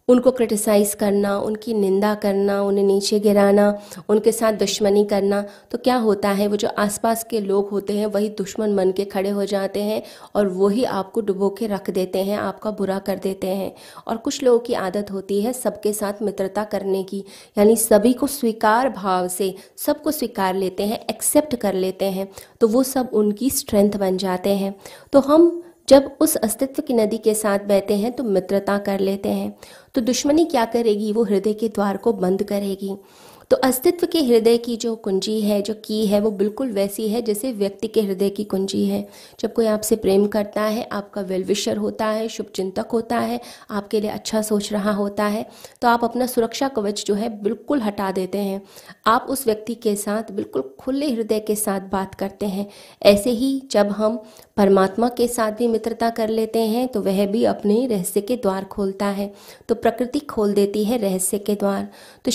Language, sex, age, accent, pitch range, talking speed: Hindi, female, 20-39, native, 200-230 Hz, 195 wpm